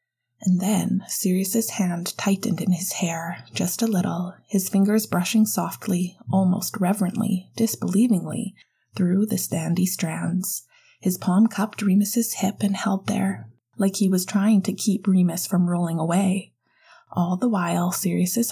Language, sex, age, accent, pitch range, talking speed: English, female, 20-39, American, 180-210 Hz, 145 wpm